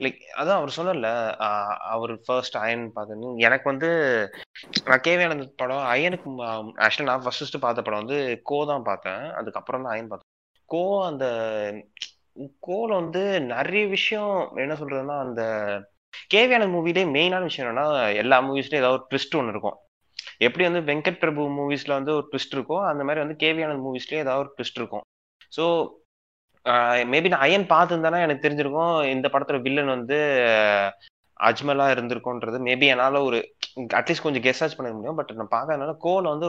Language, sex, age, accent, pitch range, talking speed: Tamil, male, 20-39, native, 115-155 Hz, 155 wpm